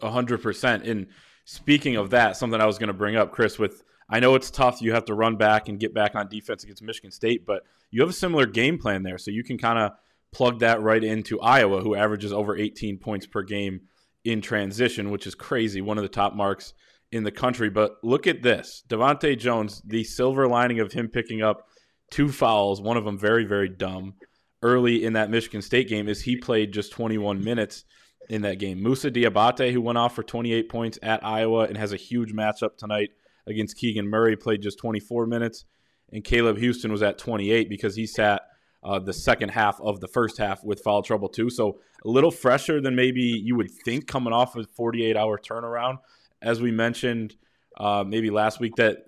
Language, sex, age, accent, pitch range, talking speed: English, male, 20-39, American, 105-120 Hz, 215 wpm